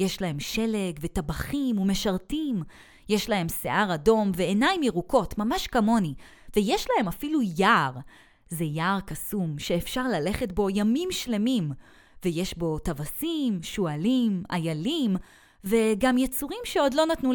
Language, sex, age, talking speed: Hebrew, female, 30-49, 120 wpm